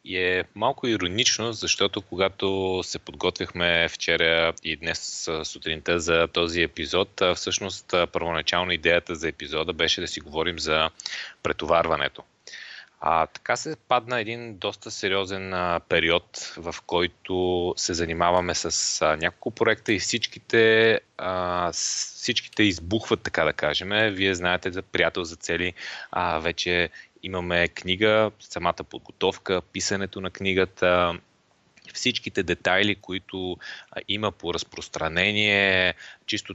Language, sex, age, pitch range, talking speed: Bulgarian, male, 30-49, 90-110 Hz, 120 wpm